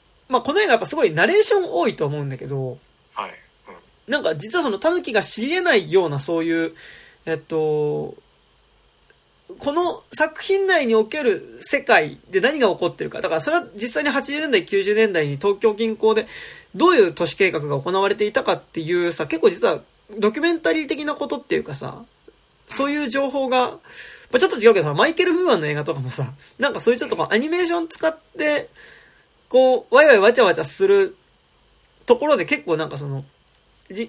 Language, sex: Japanese, male